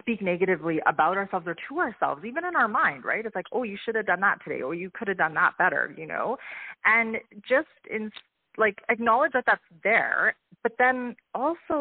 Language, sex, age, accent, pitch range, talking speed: English, female, 30-49, American, 170-230 Hz, 215 wpm